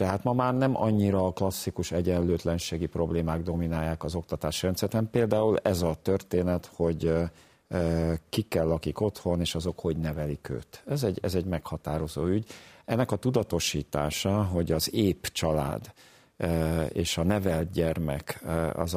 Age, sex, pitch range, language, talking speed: 50-69, male, 80-100 Hz, Hungarian, 140 wpm